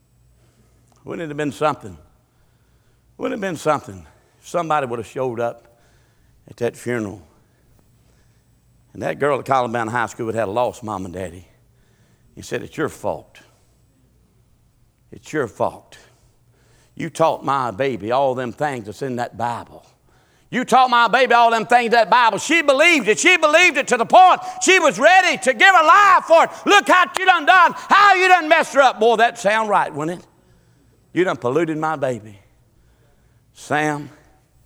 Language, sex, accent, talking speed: English, male, American, 180 wpm